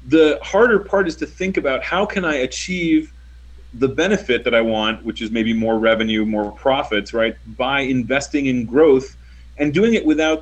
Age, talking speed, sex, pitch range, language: 30-49, 185 wpm, male, 105-150 Hz, English